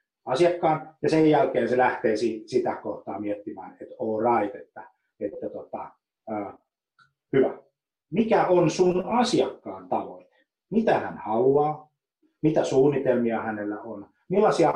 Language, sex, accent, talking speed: Finnish, male, native, 120 wpm